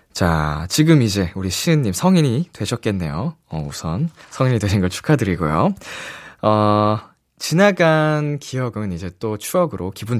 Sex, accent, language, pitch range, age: male, native, Korean, 100-160 Hz, 20-39